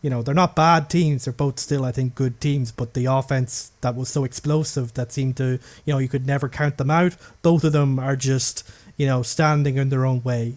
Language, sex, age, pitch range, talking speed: English, male, 20-39, 125-150 Hz, 245 wpm